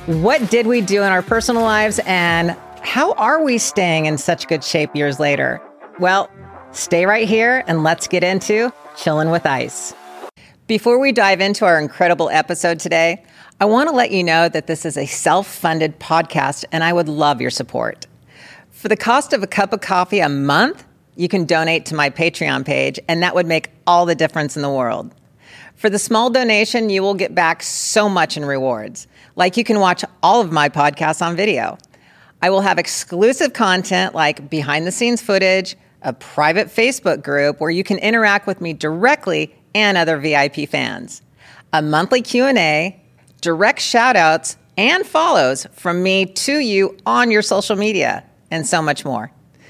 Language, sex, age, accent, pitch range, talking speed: English, female, 40-59, American, 155-215 Hz, 175 wpm